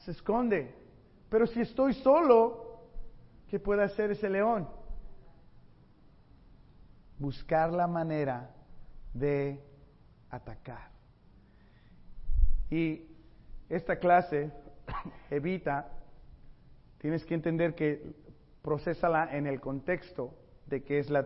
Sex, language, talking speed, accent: male, Spanish, 90 wpm, Mexican